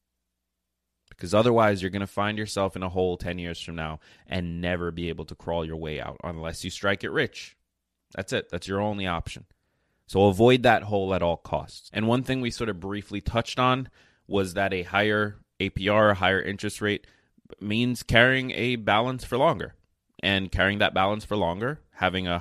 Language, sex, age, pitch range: English, male, 20-39, 90-105 Hz